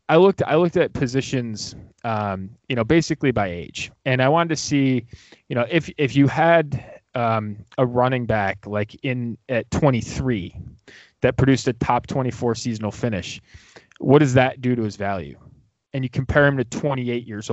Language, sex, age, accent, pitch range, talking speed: English, male, 20-39, American, 110-140 Hz, 180 wpm